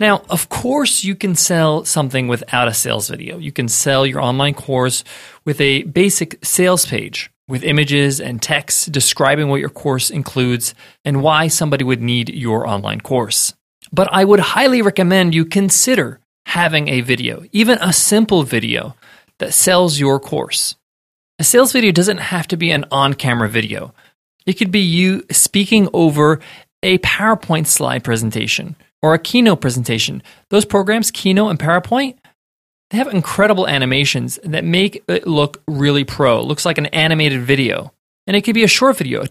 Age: 30-49